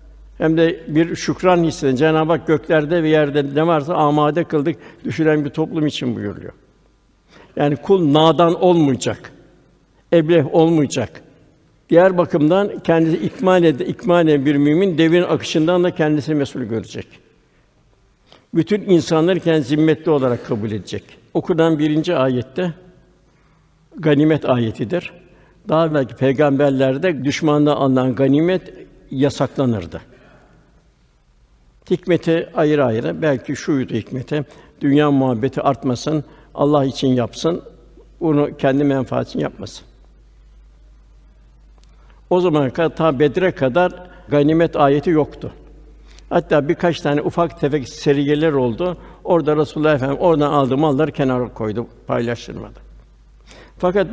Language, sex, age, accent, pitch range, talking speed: Turkish, male, 60-79, native, 135-165 Hz, 110 wpm